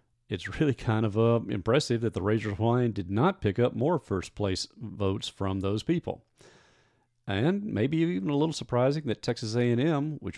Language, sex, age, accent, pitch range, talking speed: English, male, 40-59, American, 95-120 Hz, 170 wpm